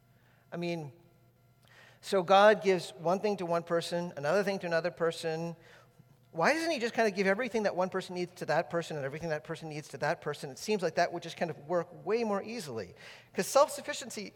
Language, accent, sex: English, American, male